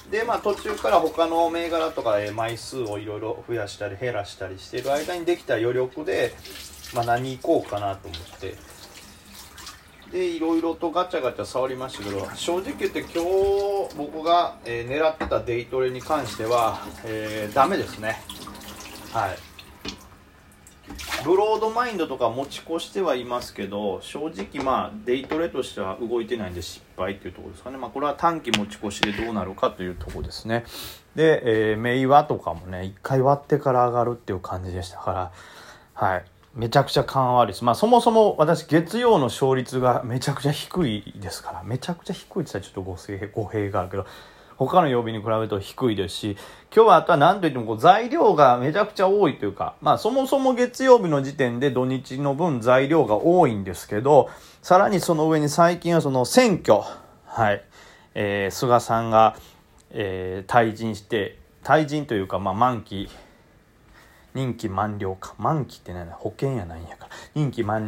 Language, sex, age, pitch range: Japanese, male, 30-49, 105-155 Hz